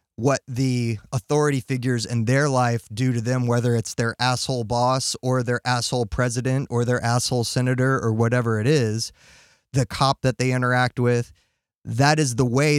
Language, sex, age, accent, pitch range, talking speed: English, male, 20-39, American, 115-135 Hz, 175 wpm